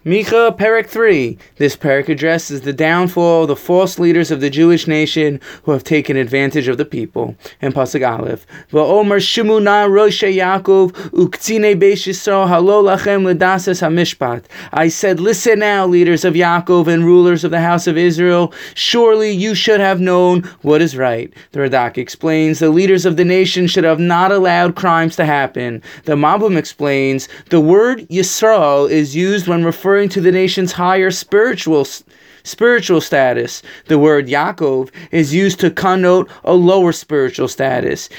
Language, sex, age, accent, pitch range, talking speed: English, male, 20-39, American, 155-195 Hz, 145 wpm